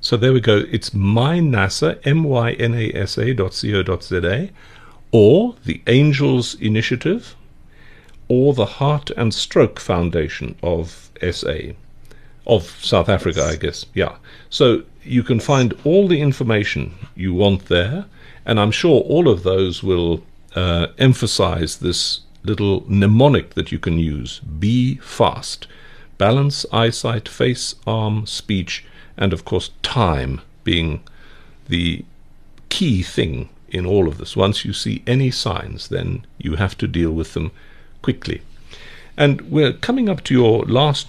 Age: 50-69